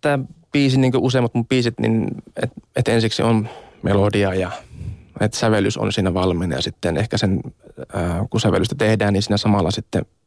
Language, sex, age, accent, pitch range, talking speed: Finnish, male, 20-39, native, 105-120 Hz, 170 wpm